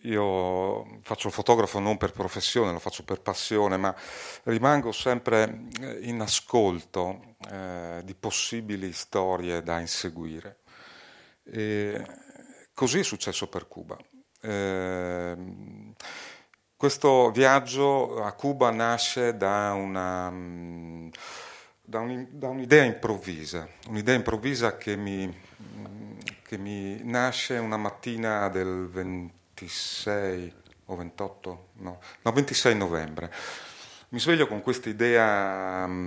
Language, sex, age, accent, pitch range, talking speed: Italian, male, 40-59, native, 90-115 Hz, 105 wpm